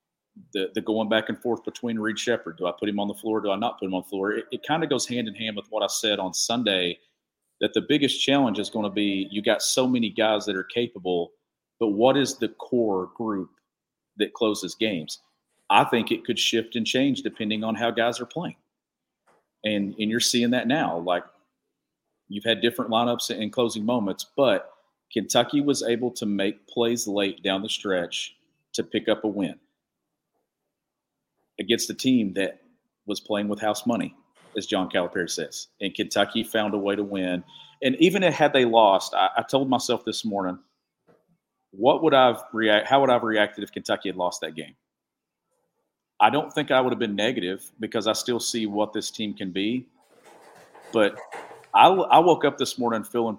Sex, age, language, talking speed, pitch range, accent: male, 40-59, English, 200 wpm, 100-120 Hz, American